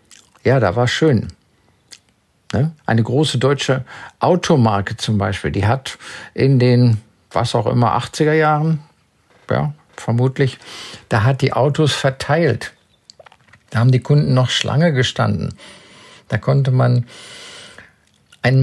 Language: German